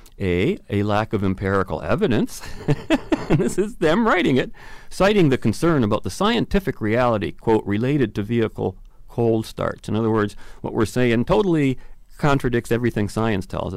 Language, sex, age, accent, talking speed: English, male, 40-59, American, 155 wpm